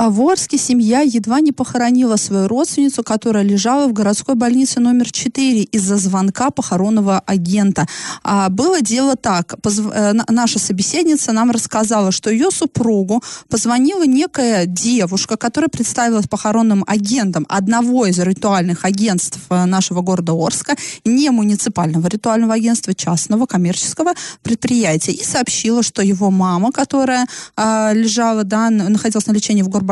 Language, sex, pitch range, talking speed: Russian, female, 195-245 Hz, 125 wpm